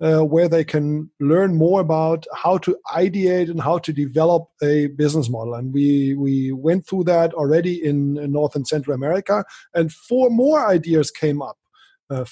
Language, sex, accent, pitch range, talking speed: English, male, German, 140-180 Hz, 180 wpm